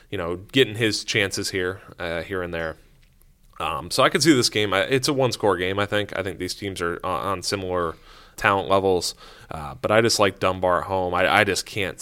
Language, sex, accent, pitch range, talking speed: English, male, American, 90-115 Hz, 220 wpm